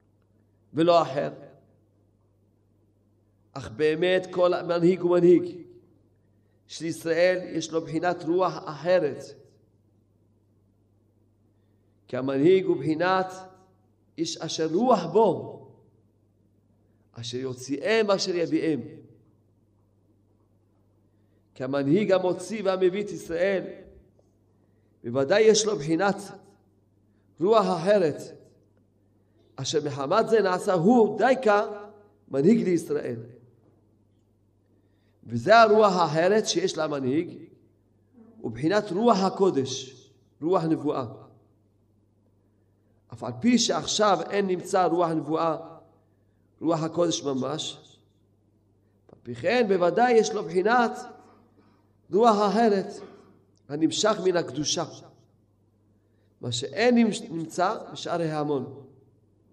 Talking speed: 85 wpm